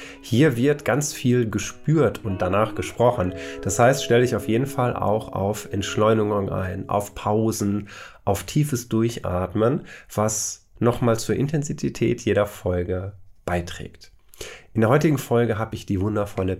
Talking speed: 140 wpm